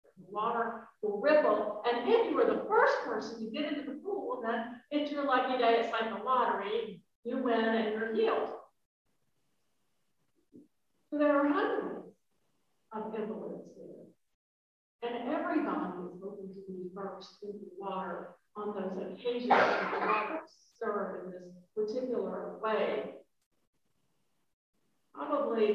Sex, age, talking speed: female, 50-69, 130 wpm